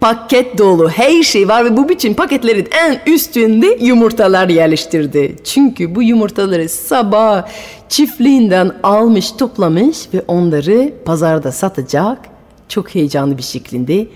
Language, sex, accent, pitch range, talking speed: Turkish, female, native, 185-310 Hz, 120 wpm